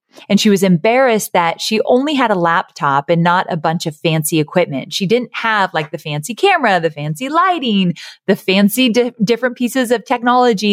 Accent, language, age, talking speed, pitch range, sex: American, English, 30-49, 190 wpm, 165-240 Hz, female